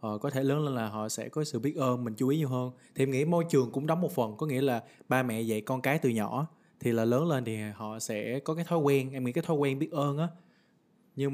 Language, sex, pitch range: Vietnamese, male, 115-150 Hz